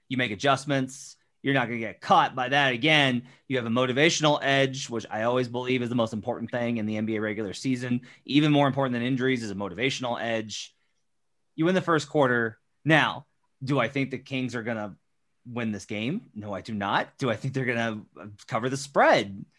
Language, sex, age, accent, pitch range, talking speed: English, male, 30-49, American, 120-160 Hz, 215 wpm